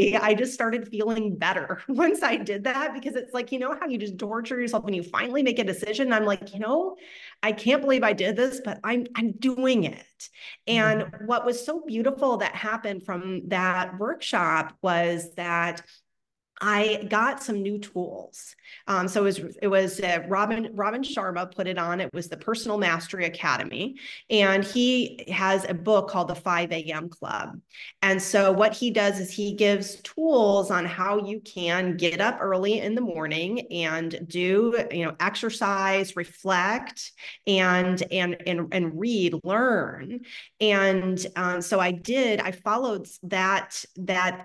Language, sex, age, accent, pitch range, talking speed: English, female, 30-49, American, 180-225 Hz, 170 wpm